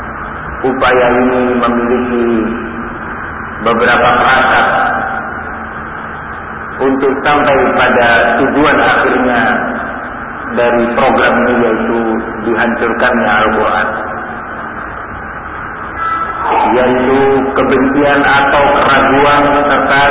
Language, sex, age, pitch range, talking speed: Indonesian, male, 40-59, 120-140 Hz, 65 wpm